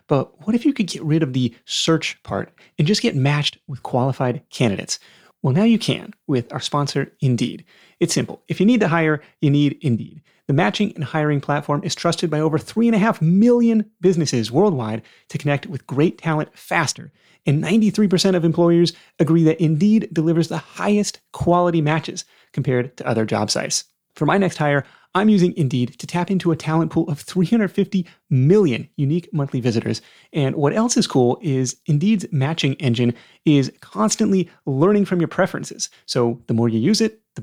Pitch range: 135-190 Hz